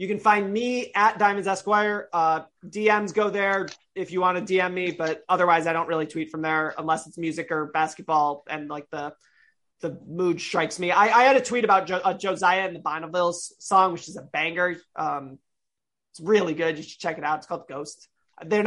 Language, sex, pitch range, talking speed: English, male, 165-210 Hz, 215 wpm